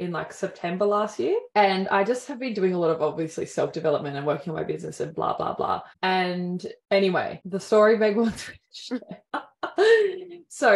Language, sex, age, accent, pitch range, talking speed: English, female, 20-39, Australian, 170-230 Hz, 180 wpm